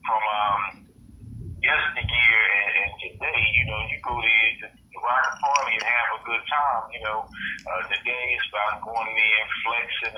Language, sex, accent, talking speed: English, male, American, 185 wpm